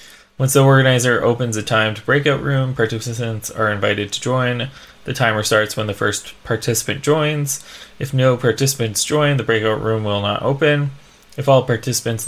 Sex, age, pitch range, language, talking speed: male, 20-39, 110-135 Hz, English, 165 wpm